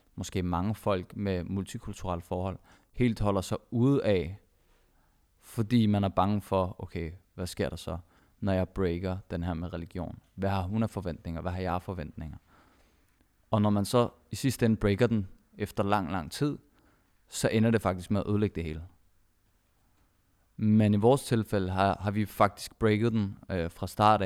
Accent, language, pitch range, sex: native, Danish, 90-105 Hz, male